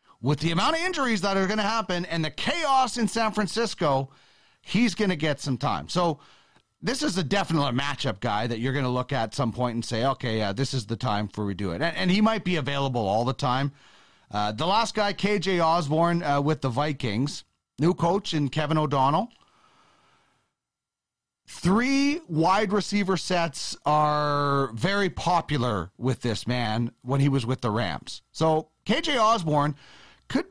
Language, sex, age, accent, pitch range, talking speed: English, male, 40-59, American, 130-200 Hz, 185 wpm